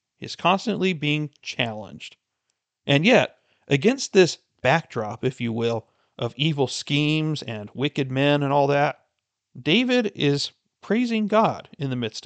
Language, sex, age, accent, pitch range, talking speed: English, male, 40-59, American, 120-165 Hz, 135 wpm